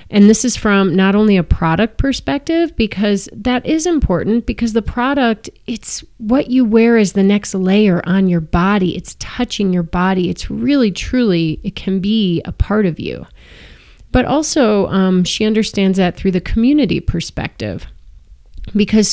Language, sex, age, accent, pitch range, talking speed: English, female, 30-49, American, 175-230 Hz, 165 wpm